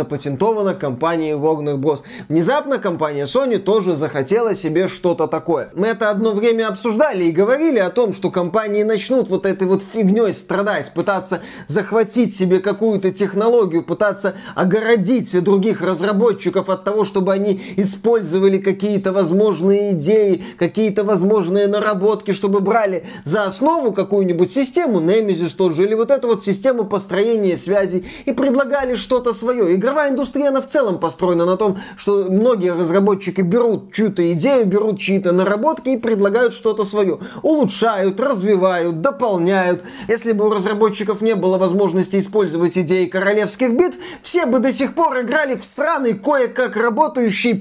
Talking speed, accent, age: 140 wpm, native, 20-39